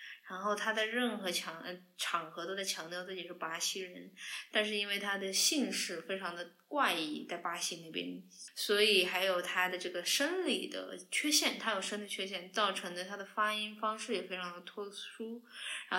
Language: Chinese